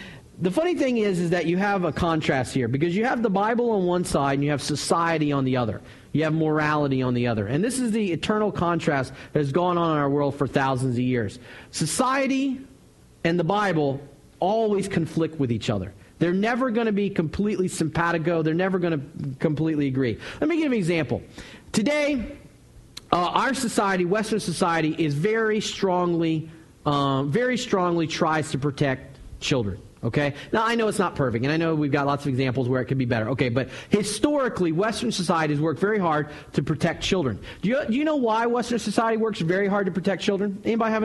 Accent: American